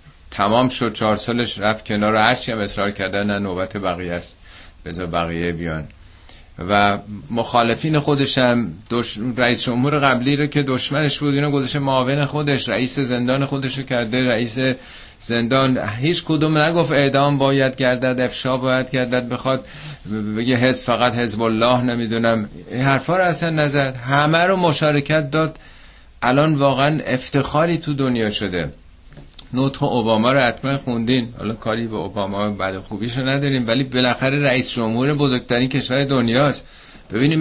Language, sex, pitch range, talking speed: Persian, male, 105-140 Hz, 145 wpm